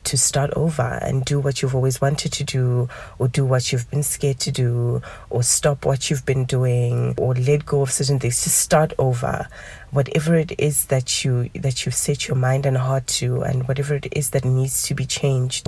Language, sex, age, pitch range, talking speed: English, female, 20-39, 130-145 Hz, 215 wpm